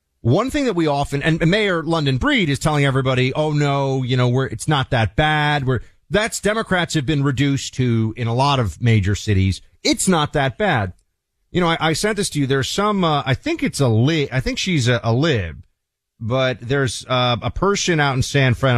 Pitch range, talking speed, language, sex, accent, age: 110-170 Hz, 220 wpm, English, male, American, 40-59